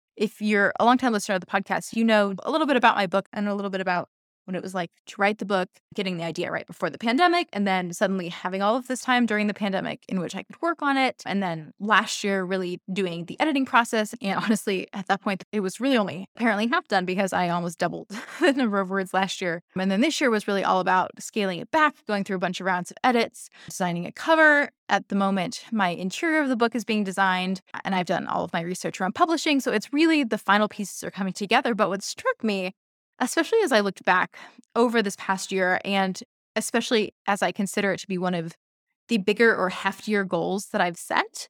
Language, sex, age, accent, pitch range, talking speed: English, female, 20-39, American, 185-230 Hz, 240 wpm